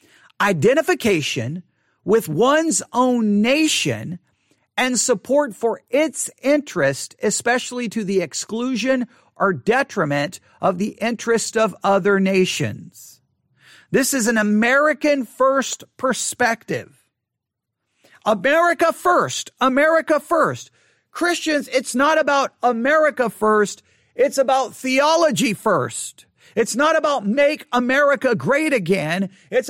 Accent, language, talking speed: American, English, 100 wpm